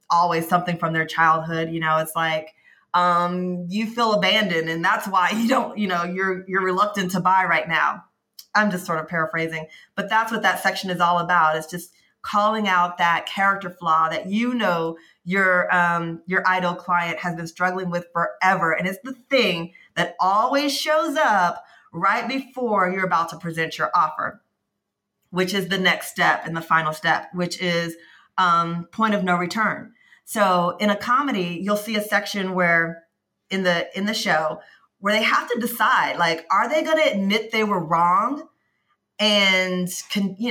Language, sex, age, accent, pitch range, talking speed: English, female, 30-49, American, 170-215 Hz, 180 wpm